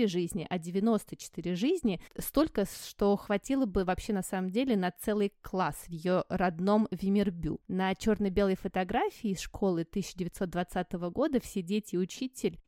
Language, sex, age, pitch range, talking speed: Russian, female, 20-39, 185-225 Hz, 140 wpm